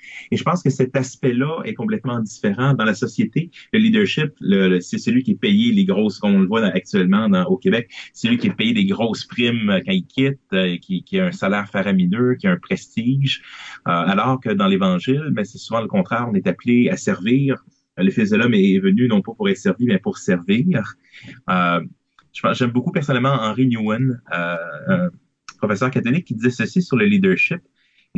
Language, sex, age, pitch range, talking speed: English, male, 30-49, 125-195 Hz, 210 wpm